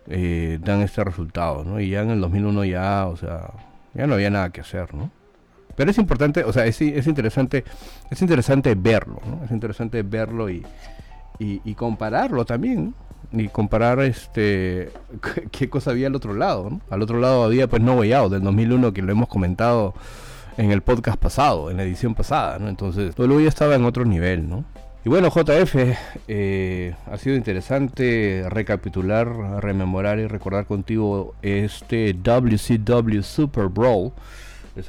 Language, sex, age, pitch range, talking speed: Spanish, male, 40-59, 95-120 Hz, 170 wpm